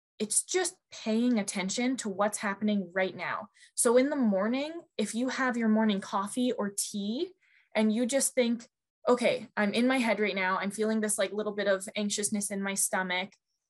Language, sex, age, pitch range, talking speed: English, female, 20-39, 200-250 Hz, 190 wpm